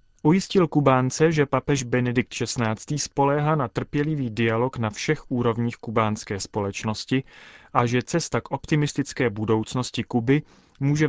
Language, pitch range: Czech, 110-135 Hz